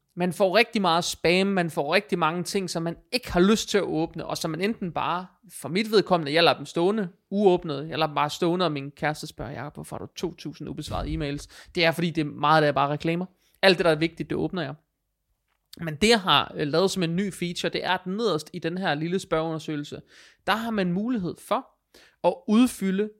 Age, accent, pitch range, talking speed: 30-49, native, 160-210 Hz, 235 wpm